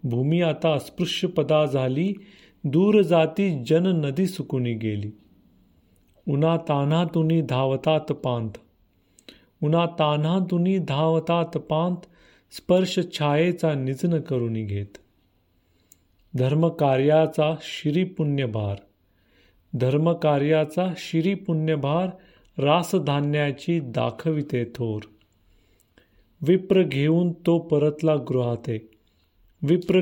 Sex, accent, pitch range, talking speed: male, native, 125-165 Hz, 80 wpm